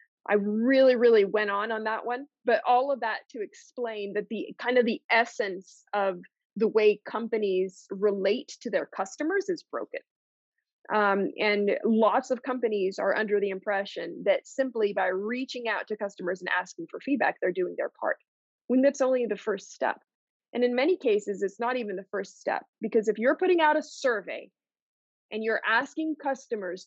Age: 20-39